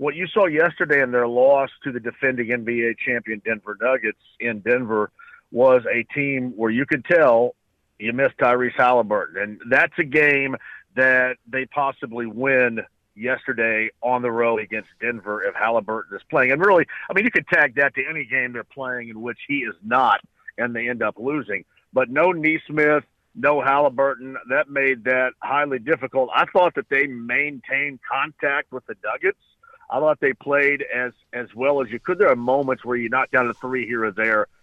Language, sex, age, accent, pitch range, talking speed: English, male, 50-69, American, 125-155 Hz, 190 wpm